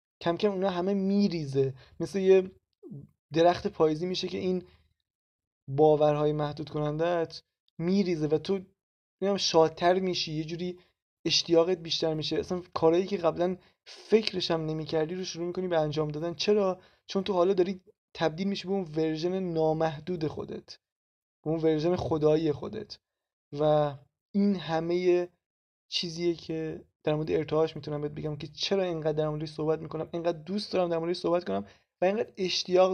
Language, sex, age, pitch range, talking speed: Persian, male, 20-39, 155-180 Hz, 150 wpm